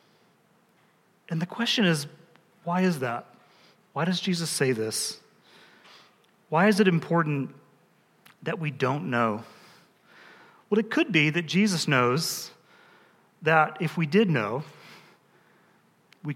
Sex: male